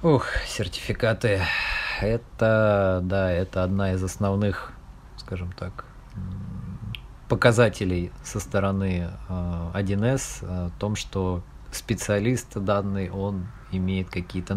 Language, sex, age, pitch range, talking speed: Russian, male, 20-39, 90-115 Hz, 90 wpm